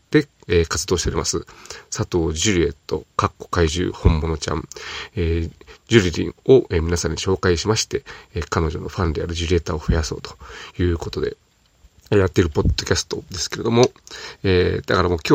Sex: male